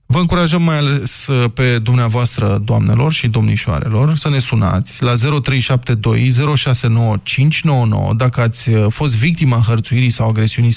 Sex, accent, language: male, native, Romanian